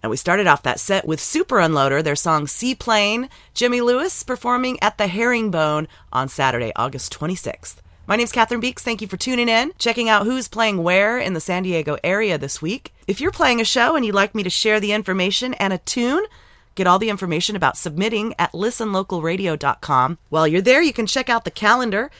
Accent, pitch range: American, 175-235 Hz